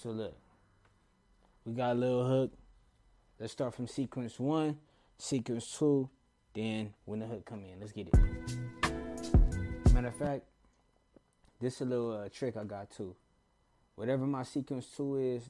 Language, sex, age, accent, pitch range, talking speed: English, male, 20-39, American, 100-125 Hz, 155 wpm